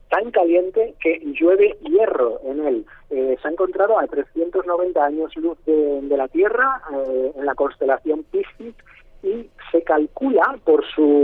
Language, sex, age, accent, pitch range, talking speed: Spanish, male, 30-49, Spanish, 140-220 Hz, 155 wpm